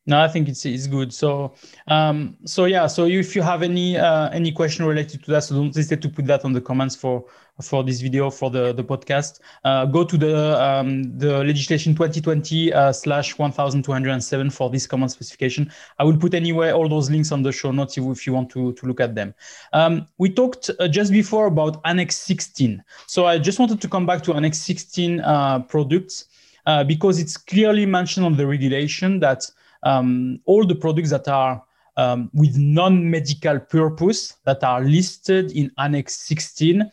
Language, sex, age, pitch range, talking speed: English, male, 20-39, 140-180 Hz, 200 wpm